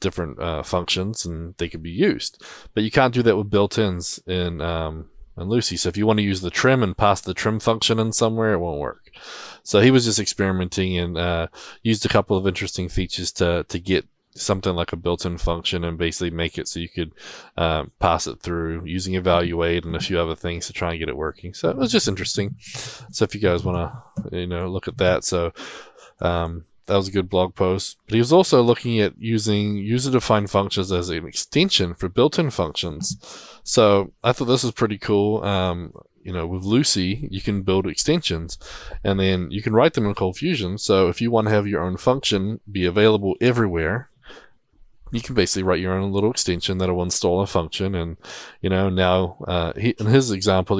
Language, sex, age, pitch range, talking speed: English, male, 20-39, 85-110 Hz, 210 wpm